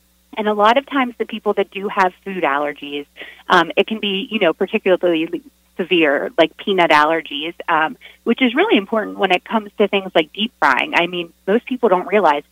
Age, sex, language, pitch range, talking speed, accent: 30-49, female, English, 150-200 Hz, 200 wpm, American